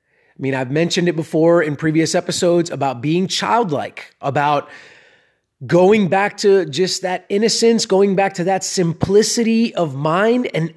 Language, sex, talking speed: English, male, 150 wpm